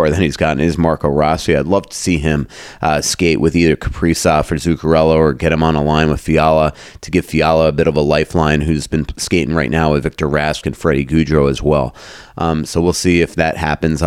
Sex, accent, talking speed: male, American, 230 wpm